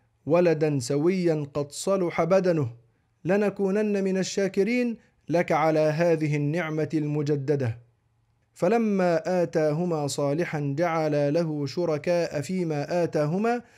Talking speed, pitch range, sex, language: 90 wpm, 145-180 Hz, male, Arabic